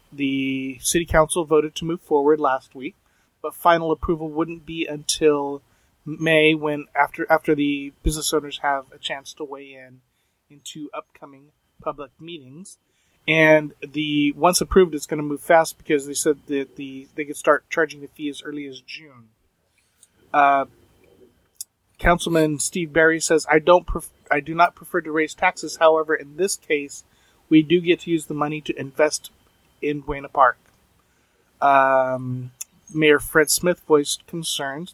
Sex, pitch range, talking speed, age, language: male, 135-160 Hz, 160 wpm, 30-49, English